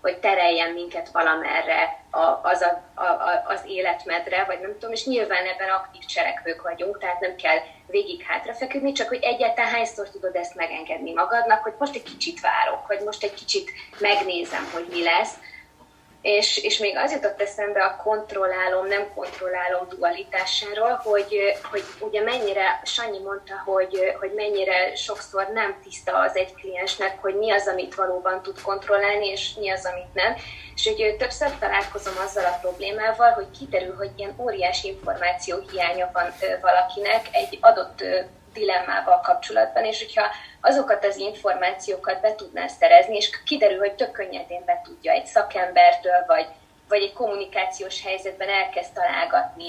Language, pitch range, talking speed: Hungarian, 180-235 Hz, 155 wpm